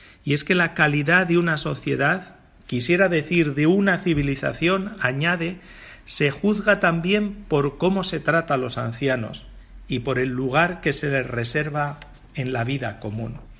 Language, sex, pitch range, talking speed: Spanish, male, 125-165 Hz, 160 wpm